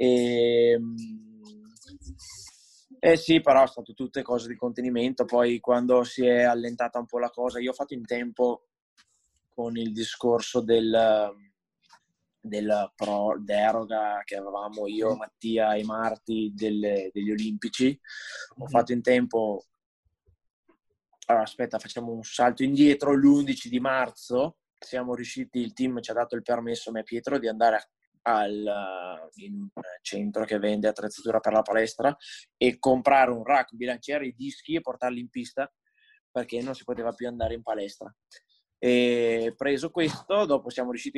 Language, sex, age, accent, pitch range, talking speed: Italian, male, 20-39, native, 115-140 Hz, 150 wpm